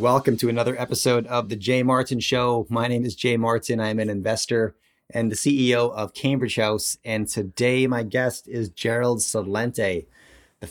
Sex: male